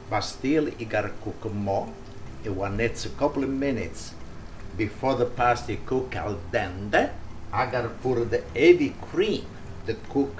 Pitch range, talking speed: 100-130 Hz, 160 wpm